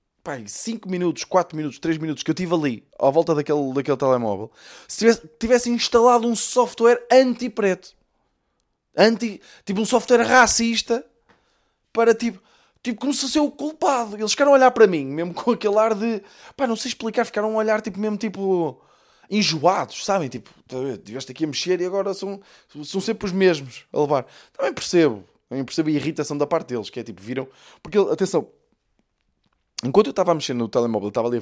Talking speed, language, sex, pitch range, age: 185 wpm, Portuguese, male, 150-220 Hz, 20-39